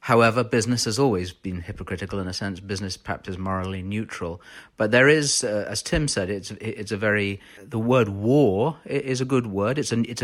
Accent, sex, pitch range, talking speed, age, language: British, male, 95-115 Hz, 205 wpm, 40-59, English